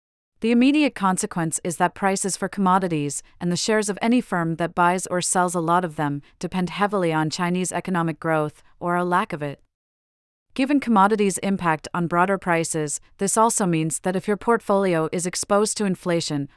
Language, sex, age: English, female, 30-49